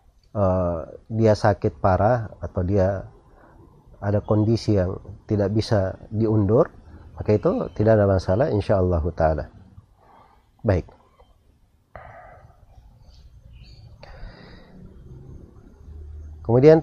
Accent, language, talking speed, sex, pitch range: native, Indonesian, 75 wpm, male, 95-120 Hz